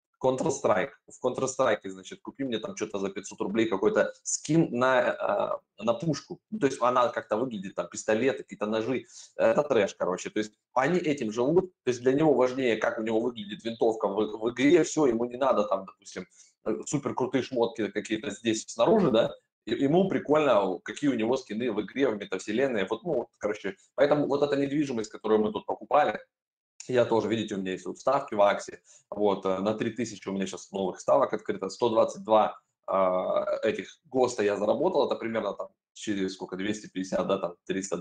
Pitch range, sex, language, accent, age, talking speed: 100-130 Hz, male, Russian, native, 20-39, 185 wpm